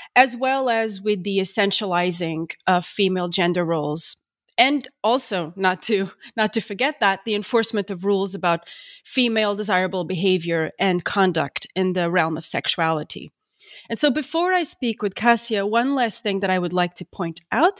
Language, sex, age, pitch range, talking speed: English, female, 30-49, 185-240 Hz, 170 wpm